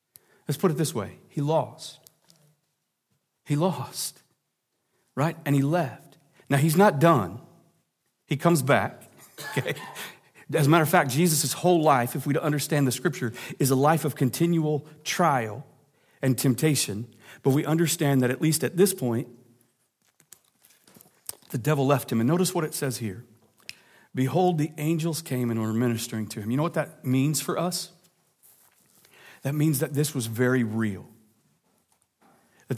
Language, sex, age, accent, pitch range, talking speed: English, male, 40-59, American, 135-175 Hz, 155 wpm